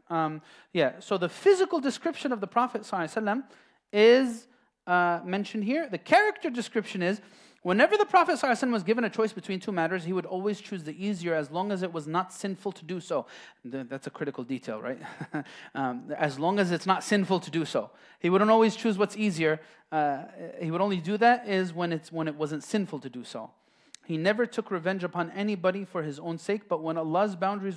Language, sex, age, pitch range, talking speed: English, male, 30-49, 175-245 Hz, 215 wpm